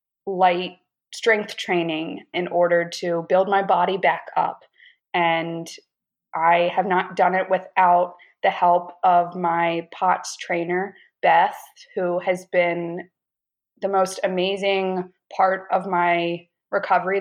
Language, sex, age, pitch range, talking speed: English, female, 20-39, 175-195 Hz, 120 wpm